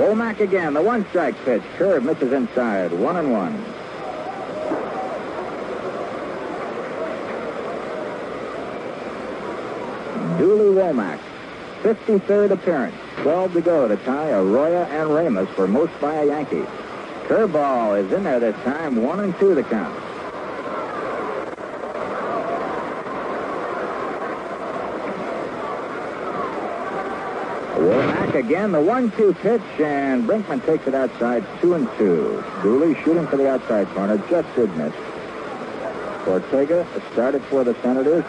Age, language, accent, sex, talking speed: 60-79, English, American, male, 105 wpm